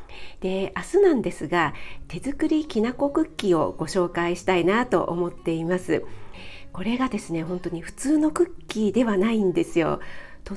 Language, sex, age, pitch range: Japanese, female, 40-59, 175-225 Hz